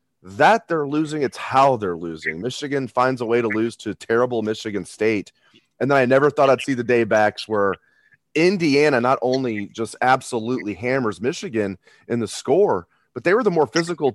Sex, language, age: male, English, 30-49